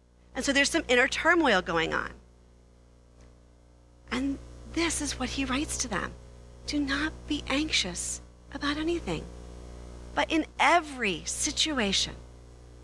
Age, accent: 40-59, American